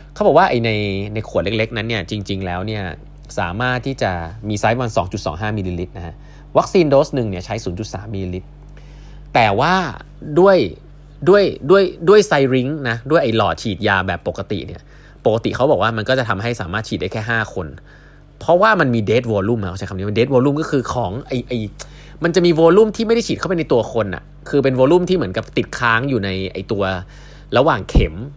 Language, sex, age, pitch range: Thai, male, 20-39, 110-150 Hz